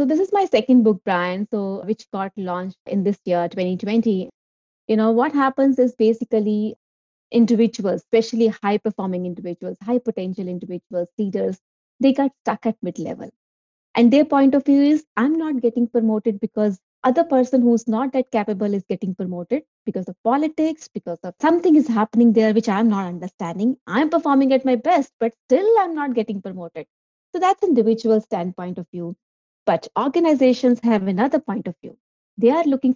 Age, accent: 30-49, Indian